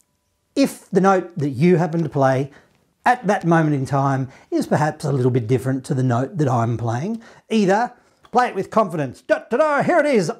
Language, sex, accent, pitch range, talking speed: English, male, Australian, 150-225 Hz, 210 wpm